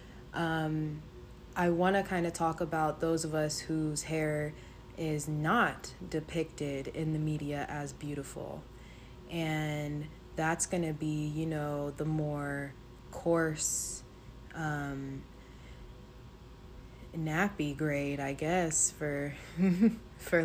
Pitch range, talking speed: 150-165 Hz, 110 wpm